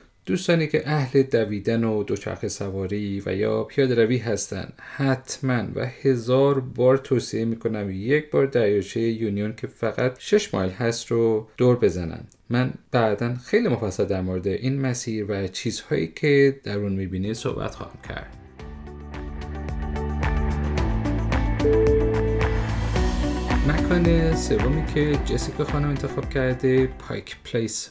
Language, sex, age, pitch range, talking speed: Persian, male, 30-49, 105-135 Hz, 120 wpm